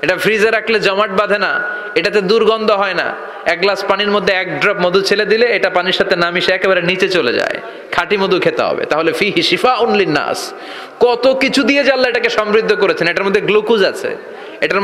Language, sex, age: Bengali, male, 30-49